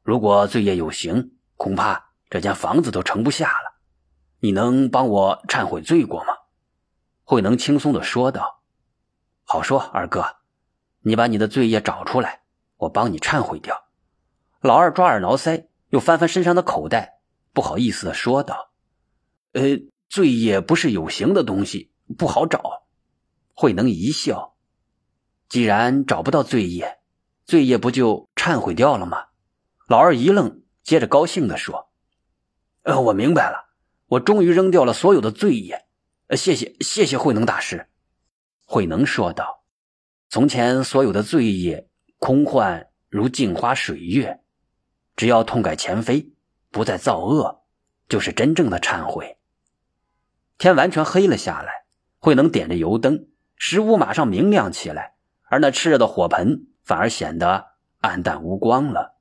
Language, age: Chinese, 30-49